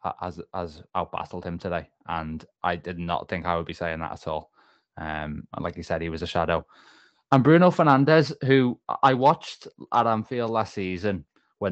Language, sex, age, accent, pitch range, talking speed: English, male, 20-39, British, 90-105 Hz, 190 wpm